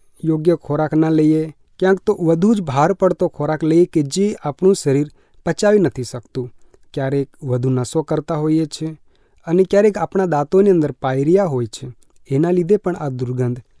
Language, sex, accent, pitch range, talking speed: Gujarati, male, native, 135-185 Hz, 135 wpm